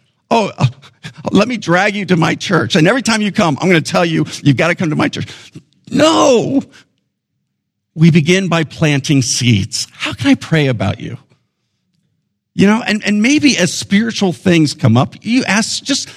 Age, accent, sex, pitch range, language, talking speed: 50-69, American, male, 125-175 Hz, English, 185 wpm